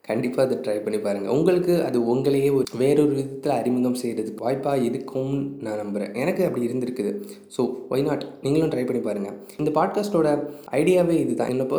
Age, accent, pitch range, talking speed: 20-39, native, 115-150 Hz, 160 wpm